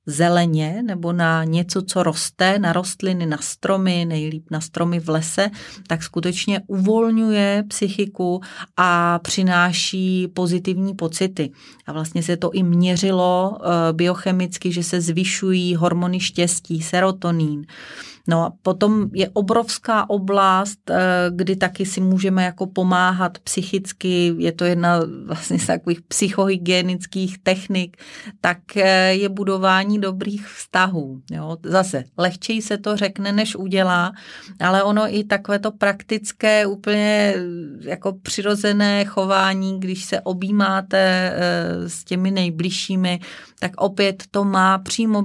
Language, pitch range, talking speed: Czech, 175-195 Hz, 120 wpm